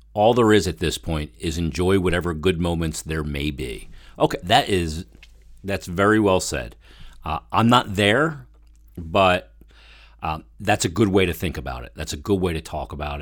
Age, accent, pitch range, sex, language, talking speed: 40-59, American, 80-95 Hz, male, English, 185 wpm